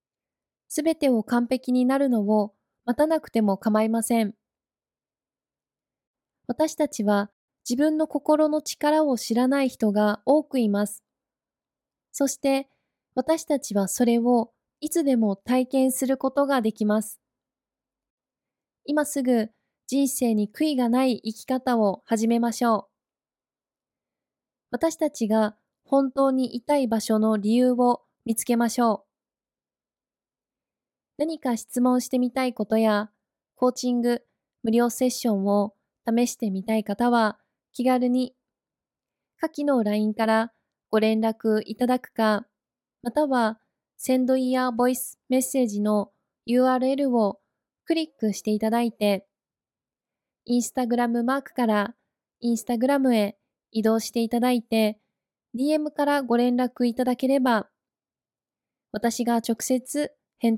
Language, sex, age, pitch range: Japanese, female, 20-39, 220-265 Hz